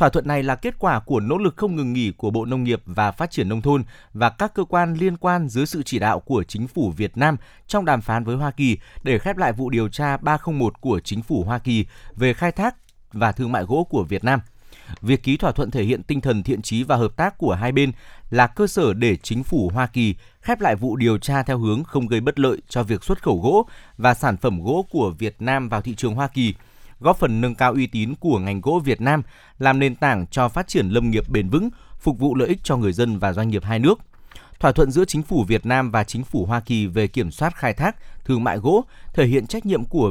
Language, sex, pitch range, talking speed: Vietnamese, male, 110-145 Hz, 260 wpm